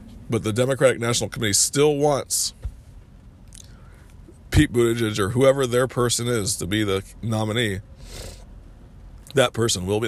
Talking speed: 130 wpm